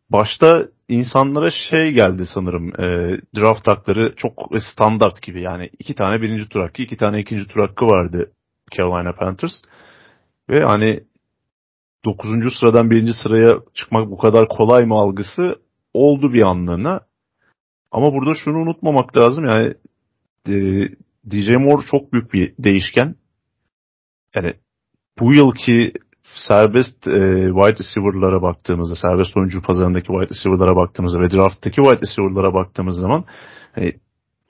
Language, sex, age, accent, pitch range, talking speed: Turkish, male, 40-59, native, 95-120 Hz, 125 wpm